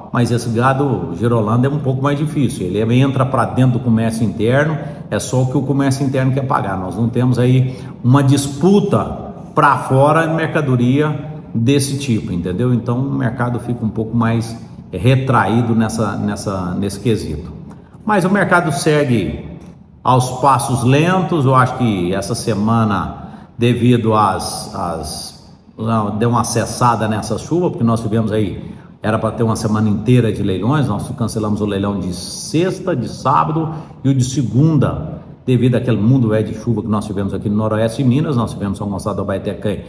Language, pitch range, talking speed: Portuguese, 105-135 Hz, 170 wpm